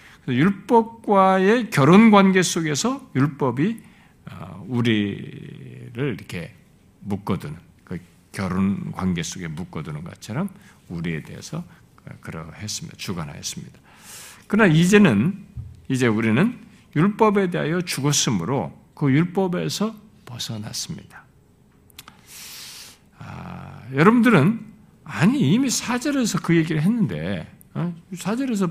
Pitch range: 130-200 Hz